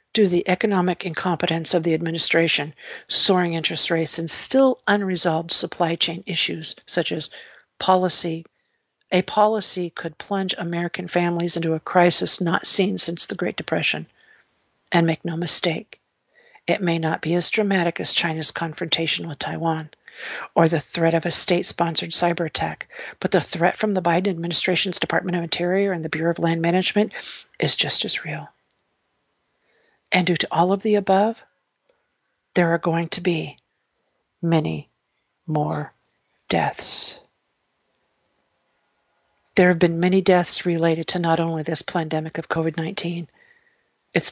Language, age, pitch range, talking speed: English, 50-69, 165-185 Hz, 145 wpm